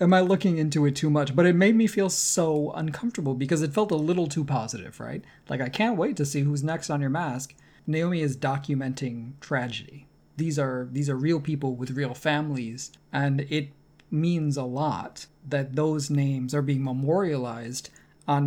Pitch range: 135-160 Hz